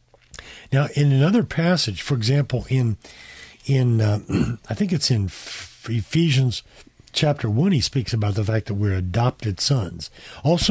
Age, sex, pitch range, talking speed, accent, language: 50-69, male, 110-155 Hz, 145 wpm, American, English